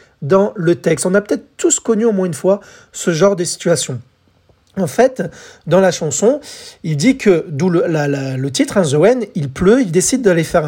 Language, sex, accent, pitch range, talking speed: French, male, French, 165-225 Hz, 215 wpm